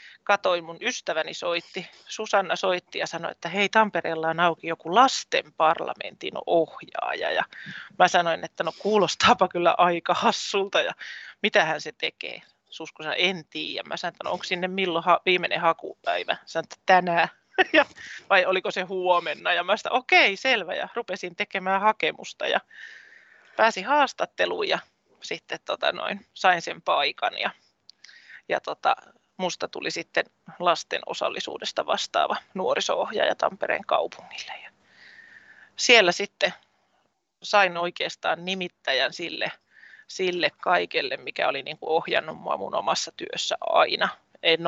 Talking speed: 135 wpm